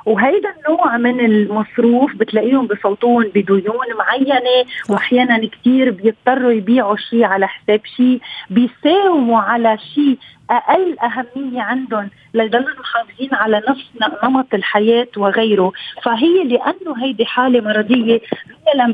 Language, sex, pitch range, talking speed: Arabic, female, 220-270 Hz, 115 wpm